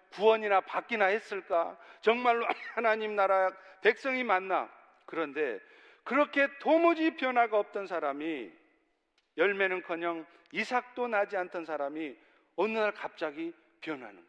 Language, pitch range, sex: Korean, 180-255 Hz, male